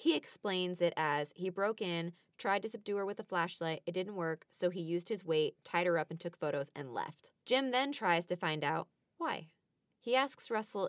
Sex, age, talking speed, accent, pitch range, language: female, 20-39, 220 wpm, American, 165-200 Hz, English